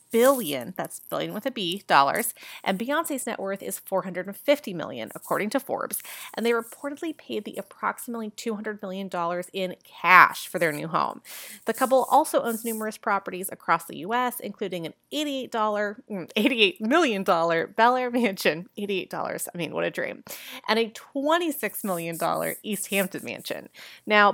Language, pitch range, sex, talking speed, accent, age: English, 195-270 Hz, female, 155 wpm, American, 20-39